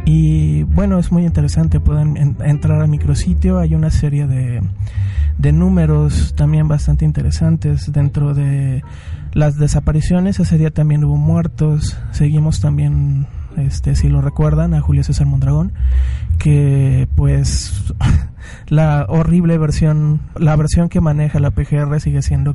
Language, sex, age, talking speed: Spanish, male, 20-39, 135 wpm